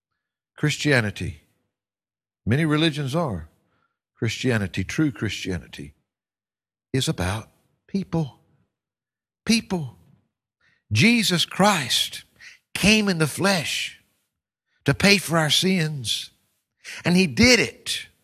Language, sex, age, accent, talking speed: English, male, 60-79, American, 85 wpm